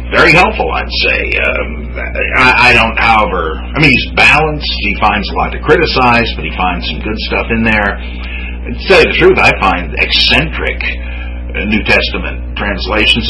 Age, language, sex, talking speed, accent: 50-69, English, male, 170 wpm, American